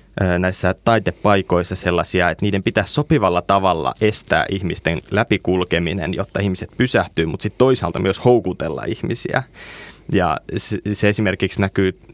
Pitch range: 90-105 Hz